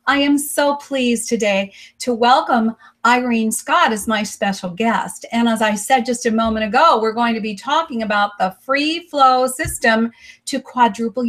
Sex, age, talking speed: female, 40-59, 175 wpm